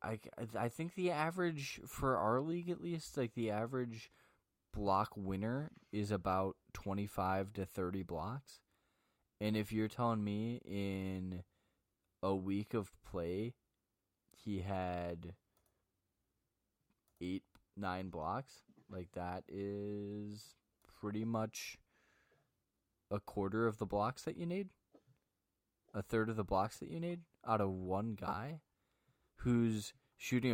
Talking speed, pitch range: 125 wpm, 95-115 Hz